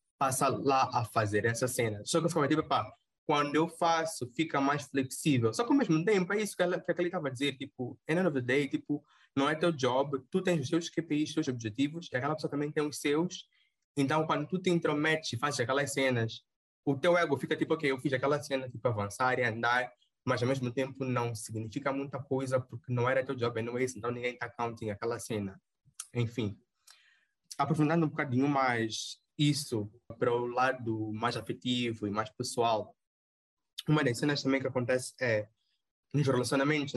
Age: 20-39